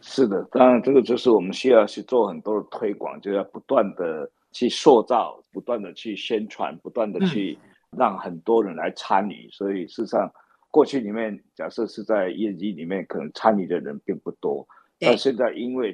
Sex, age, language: male, 50-69, Chinese